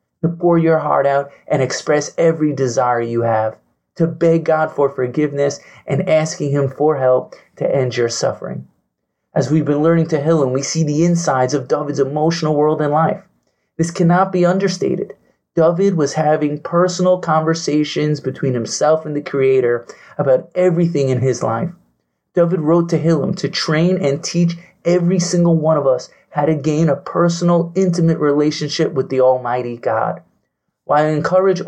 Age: 30-49